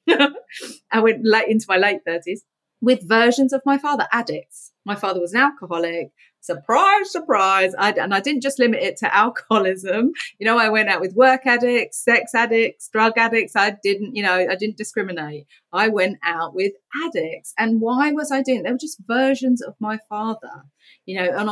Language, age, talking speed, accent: English, 30-49, 190 wpm, British